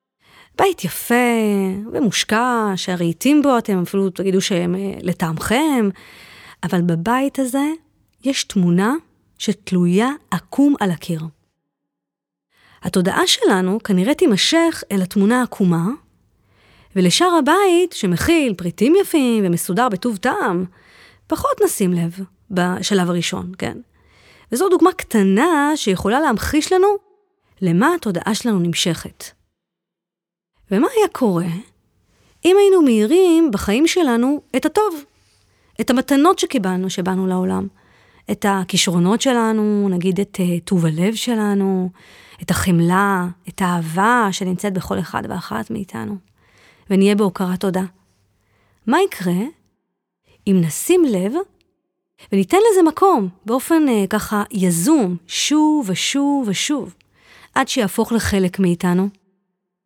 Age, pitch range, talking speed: 30-49, 185-280 Hz, 105 wpm